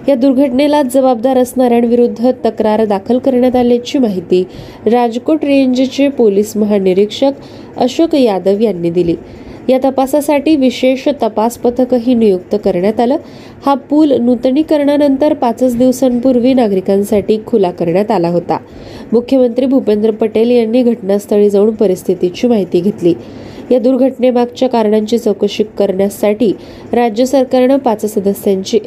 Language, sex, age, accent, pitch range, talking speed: Marathi, female, 20-39, native, 210-260 Hz, 75 wpm